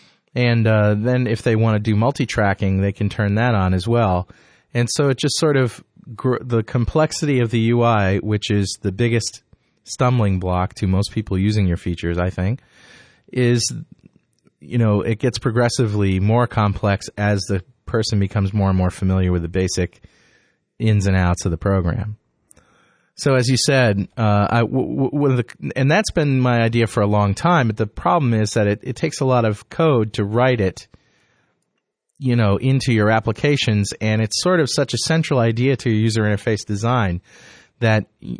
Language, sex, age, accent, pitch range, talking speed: English, male, 30-49, American, 100-125 Hz, 180 wpm